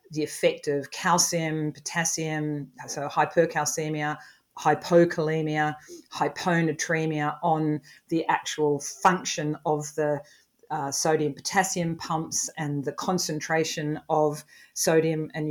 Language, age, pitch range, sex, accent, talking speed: English, 40-59, 155-180 Hz, female, Australian, 95 wpm